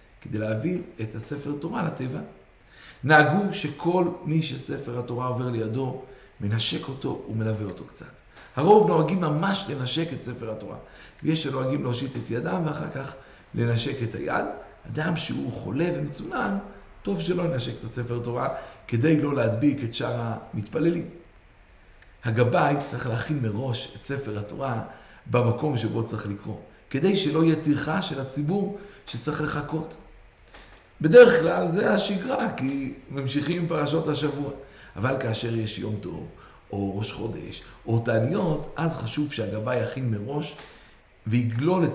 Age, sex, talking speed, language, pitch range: 50-69, male, 135 wpm, Hebrew, 115-155 Hz